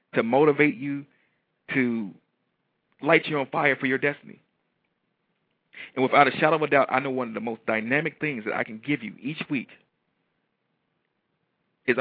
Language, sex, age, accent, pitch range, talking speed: English, male, 40-59, American, 130-155 Hz, 170 wpm